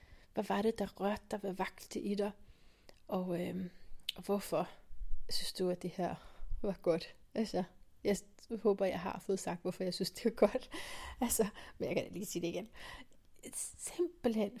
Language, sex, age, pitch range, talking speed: Danish, female, 30-49, 190-220 Hz, 175 wpm